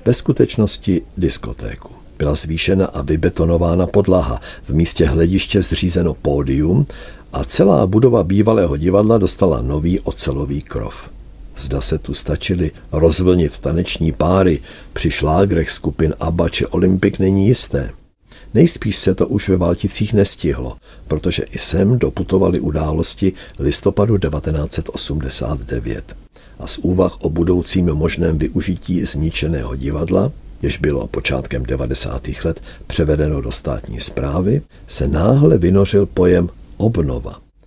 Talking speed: 120 wpm